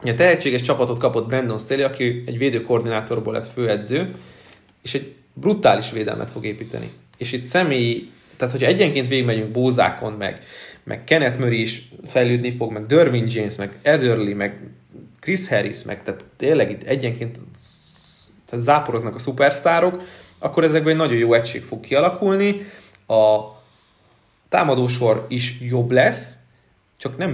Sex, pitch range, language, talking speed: male, 115-145 Hz, Hungarian, 140 wpm